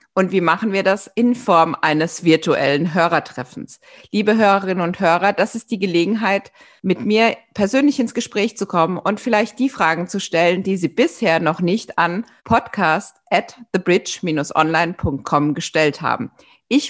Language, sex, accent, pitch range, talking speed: German, female, German, 160-215 Hz, 155 wpm